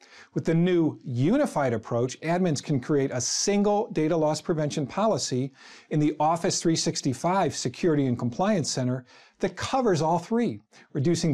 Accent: American